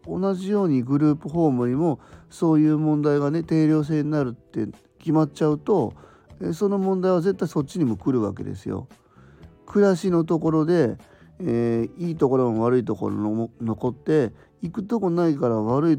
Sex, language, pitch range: male, Japanese, 115-155 Hz